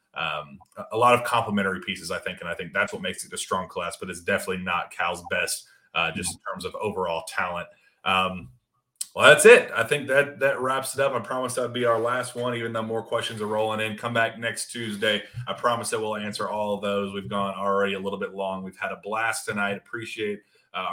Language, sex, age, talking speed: English, male, 30-49, 235 wpm